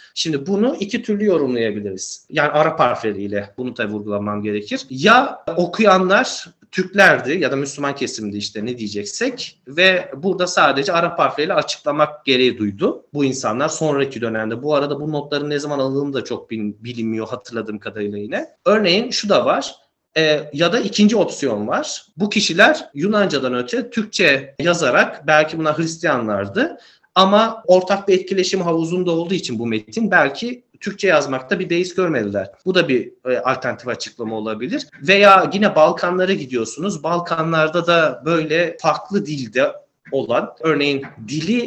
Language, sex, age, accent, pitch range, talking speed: Turkish, male, 40-59, native, 130-185 Hz, 145 wpm